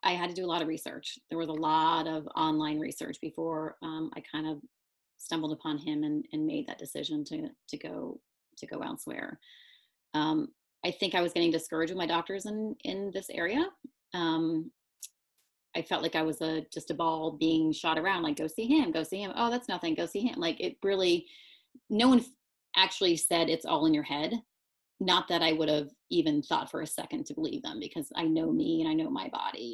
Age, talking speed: 30-49, 220 wpm